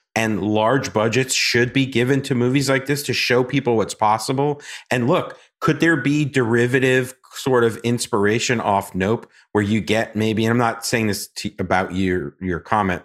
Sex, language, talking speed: male, English, 185 wpm